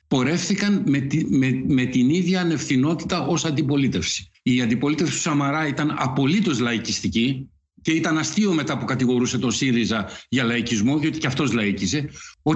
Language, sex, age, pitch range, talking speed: Greek, male, 60-79, 120-160 Hz, 155 wpm